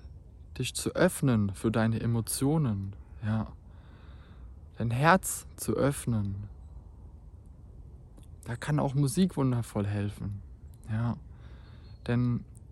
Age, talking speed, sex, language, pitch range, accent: 20-39, 90 wpm, male, German, 95-125 Hz, German